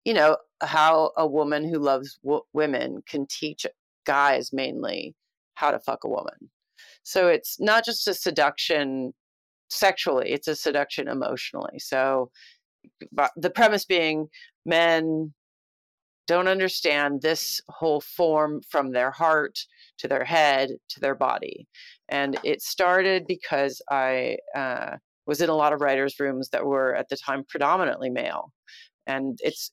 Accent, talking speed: American, 140 wpm